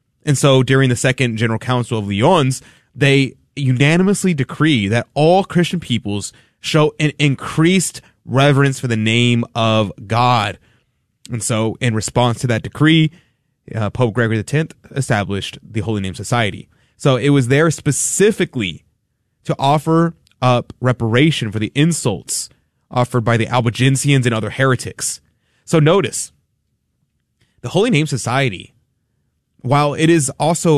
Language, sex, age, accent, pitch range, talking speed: English, male, 20-39, American, 115-145 Hz, 135 wpm